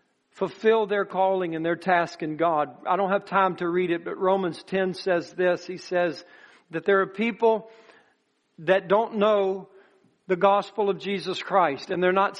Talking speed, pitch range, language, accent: 180 wpm, 175-200 Hz, English, American